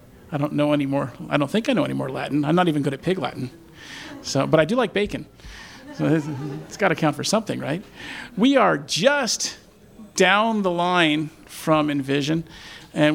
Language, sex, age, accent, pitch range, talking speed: English, male, 50-69, American, 140-165 Hz, 200 wpm